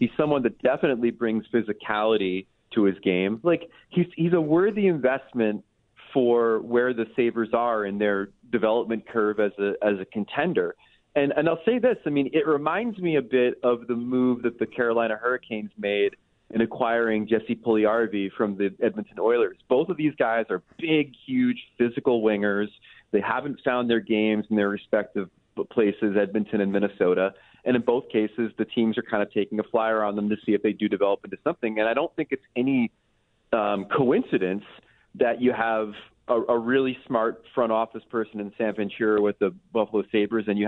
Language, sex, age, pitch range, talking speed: English, male, 30-49, 105-130 Hz, 185 wpm